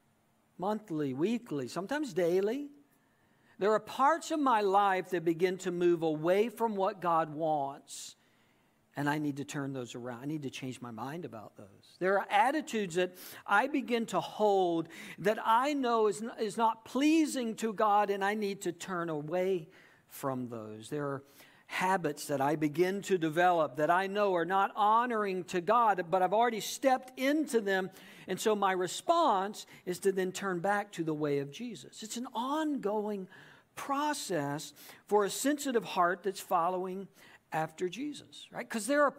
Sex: male